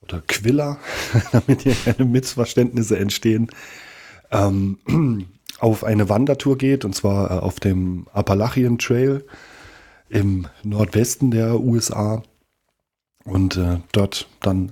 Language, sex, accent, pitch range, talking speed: German, male, German, 95-115 Hz, 100 wpm